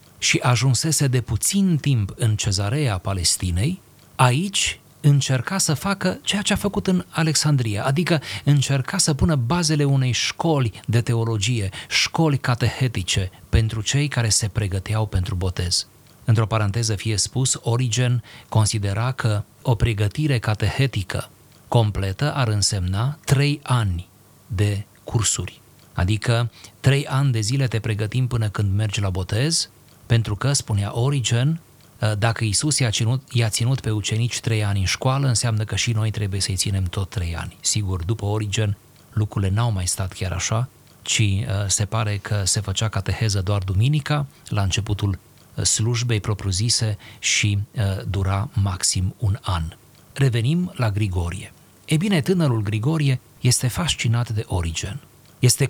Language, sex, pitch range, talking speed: Romanian, male, 105-135 Hz, 140 wpm